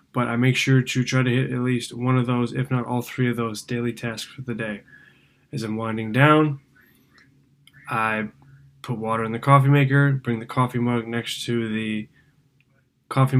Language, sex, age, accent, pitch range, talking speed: English, male, 20-39, American, 115-130 Hz, 195 wpm